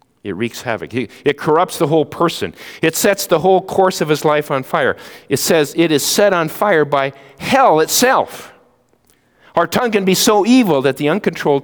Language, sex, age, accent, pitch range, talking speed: English, male, 50-69, American, 115-170 Hz, 190 wpm